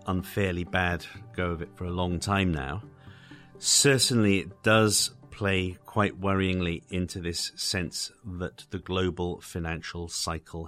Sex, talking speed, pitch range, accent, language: male, 135 wpm, 80-95 Hz, British, English